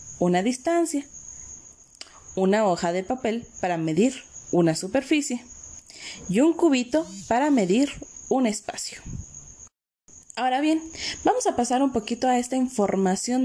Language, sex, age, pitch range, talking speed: Spanish, female, 30-49, 185-245 Hz, 120 wpm